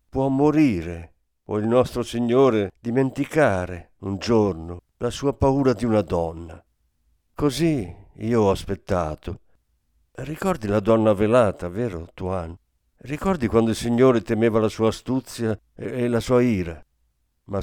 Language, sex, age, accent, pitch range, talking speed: Italian, male, 50-69, native, 90-120 Hz, 135 wpm